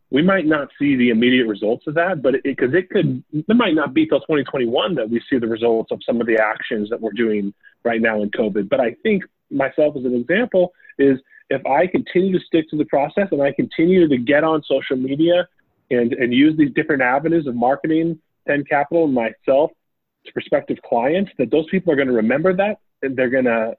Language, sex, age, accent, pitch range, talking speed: English, male, 30-49, American, 125-180 Hz, 210 wpm